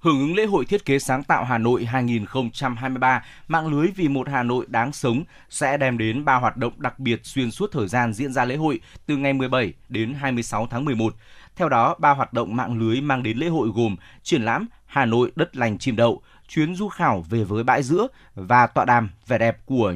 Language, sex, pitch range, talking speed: Vietnamese, male, 115-140 Hz, 225 wpm